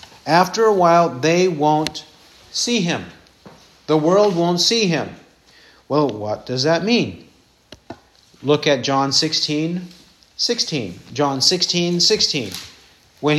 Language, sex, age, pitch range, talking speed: English, male, 50-69, 145-190 Hz, 115 wpm